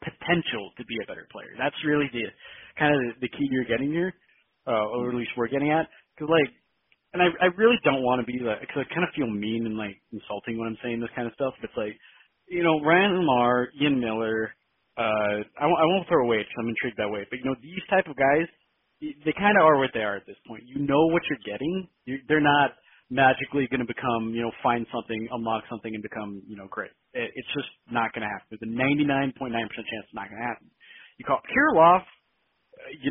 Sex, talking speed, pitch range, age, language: male, 235 wpm, 115-155 Hz, 30-49, English